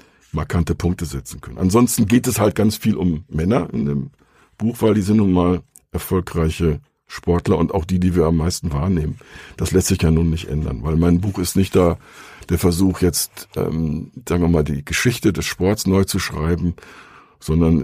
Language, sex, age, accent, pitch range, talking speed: German, male, 60-79, German, 80-95 Hz, 195 wpm